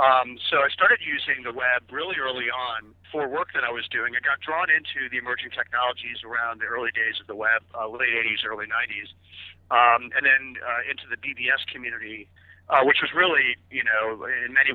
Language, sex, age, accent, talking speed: English, male, 50-69, American, 210 wpm